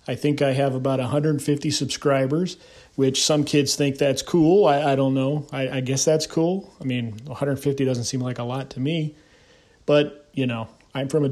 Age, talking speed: 40-59, 200 wpm